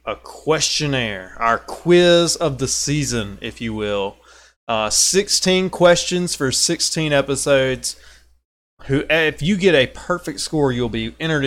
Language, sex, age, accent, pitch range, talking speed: English, male, 20-39, American, 105-135 Hz, 135 wpm